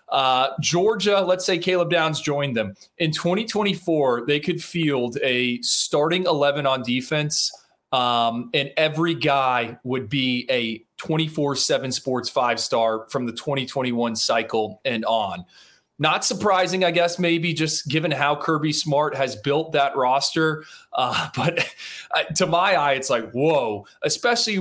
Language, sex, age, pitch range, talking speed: English, male, 20-39, 135-170 Hz, 140 wpm